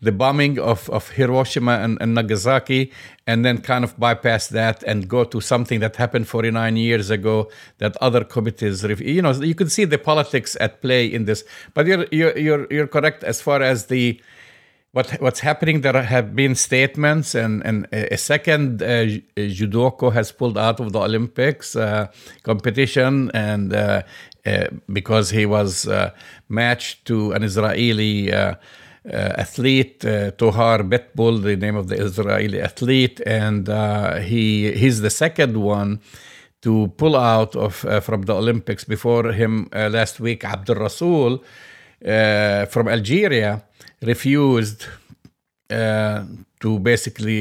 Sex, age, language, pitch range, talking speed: male, 50-69, English, 105-130 Hz, 155 wpm